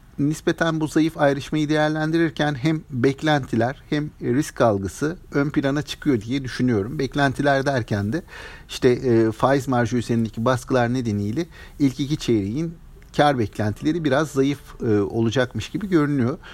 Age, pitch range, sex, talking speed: 50-69, 115-160 Hz, male, 125 wpm